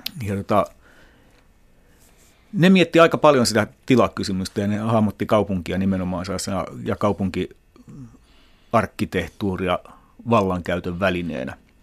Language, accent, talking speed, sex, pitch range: Finnish, native, 80 wpm, male, 95-115 Hz